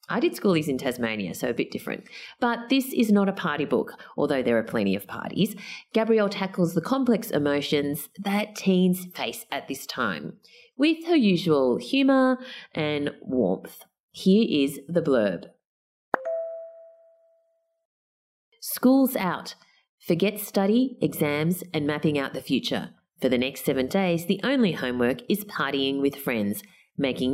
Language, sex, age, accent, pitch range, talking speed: English, female, 30-49, Australian, 140-220 Hz, 145 wpm